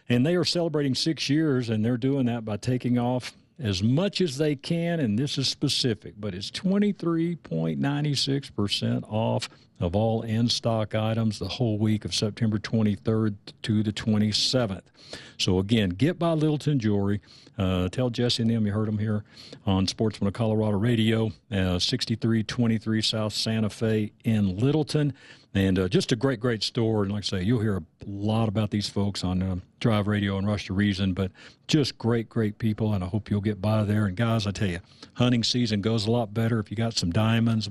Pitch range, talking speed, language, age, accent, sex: 105-135 Hz, 190 wpm, English, 50-69, American, male